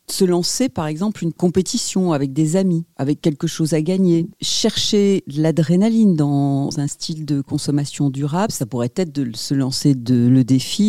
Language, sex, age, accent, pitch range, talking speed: French, female, 40-59, French, 145-185 Hz, 175 wpm